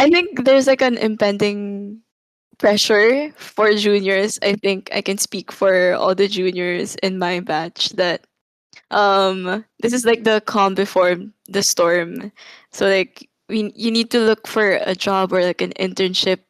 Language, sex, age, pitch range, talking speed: English, female, 20-39, 185-220 Hz, 160 wpm